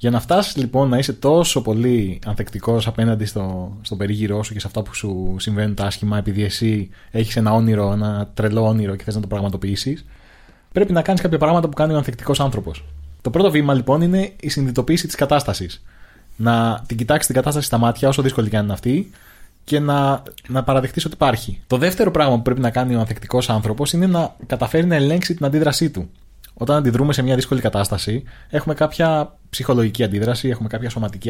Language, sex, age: Greek, male, 20-39